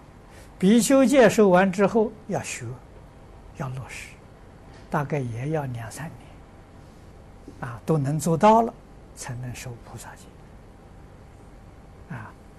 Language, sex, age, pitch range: Chinese, male, 60-79, 110-175 Hz